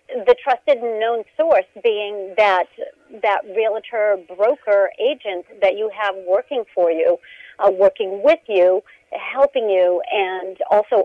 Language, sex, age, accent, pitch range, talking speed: English, female, 50-69, American, 185-250 Hz, 135 wpm